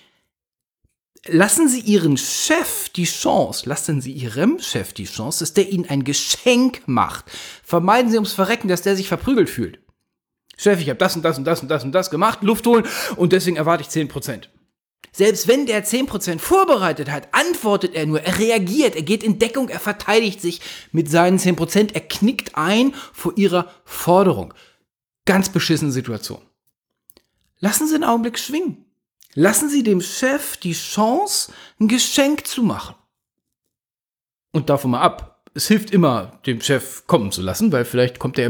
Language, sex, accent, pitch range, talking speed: German, male, German, 140-210 Hz, 170 wpm